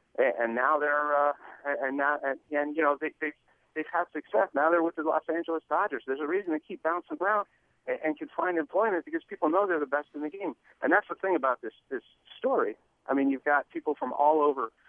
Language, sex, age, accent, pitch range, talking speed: English, male, 40-59, American, 135-160 Hz, 240 wpm